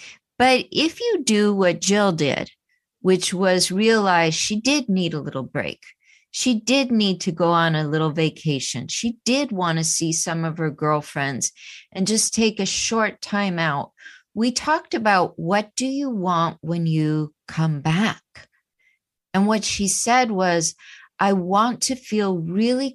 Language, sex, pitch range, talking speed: English, female, 165-225 Hz, 160 wpm